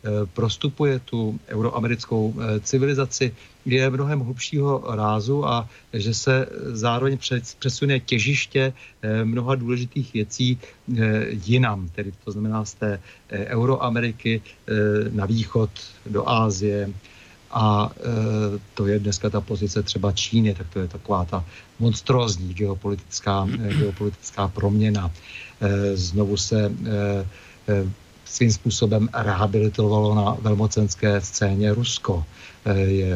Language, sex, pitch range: Slovak, male, 100-115 Hz